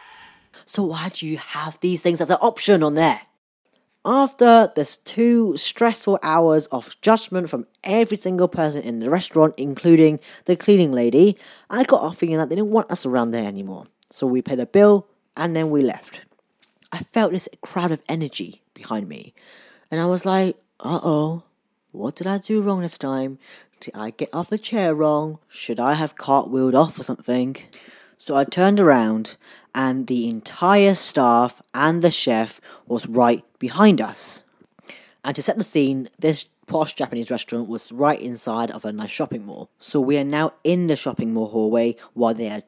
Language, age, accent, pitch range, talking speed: English, 30-49, British, 130-190 Hz, 185 wpm